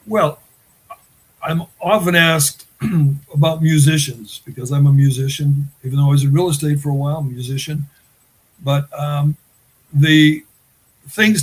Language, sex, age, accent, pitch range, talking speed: English, male, 60-79, American, 135-160 Hz, 140 wpm